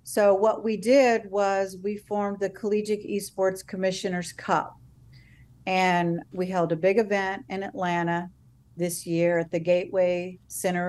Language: English